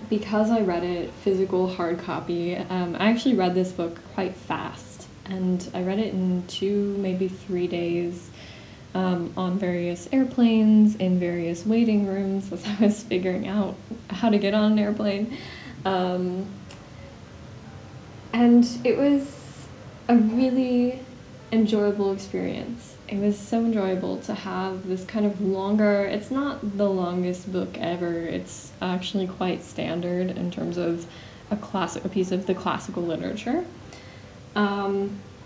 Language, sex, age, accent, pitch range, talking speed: English, female, 10-29, American, 180-205 Hz, 140 wpm